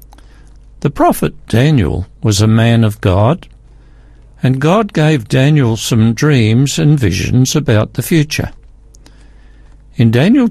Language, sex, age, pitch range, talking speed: English, male, 60-79, 115-150 Hz, 120 wpm